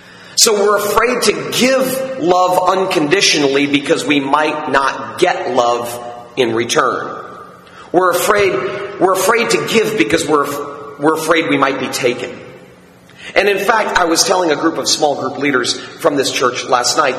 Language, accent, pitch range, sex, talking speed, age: English, American, 150-205 Hz, male, 155 wpm, 40-59